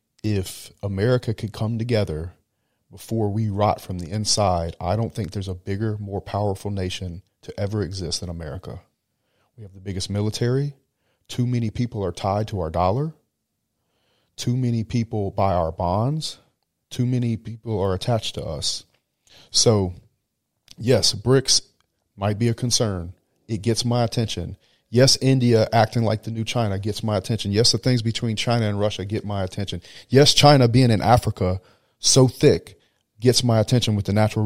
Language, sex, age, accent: English, male, 40-59, American